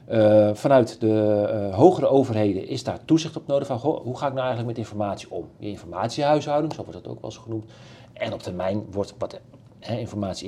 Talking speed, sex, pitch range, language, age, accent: 205 wpm, male, 110-130 Hz, Dutch, 40-59, Dutch